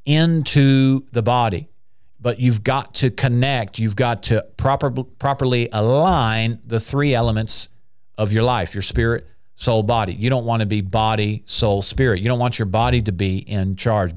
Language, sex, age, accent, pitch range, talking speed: English, male, 50-69, American, 105-135 Hz, 175 wpm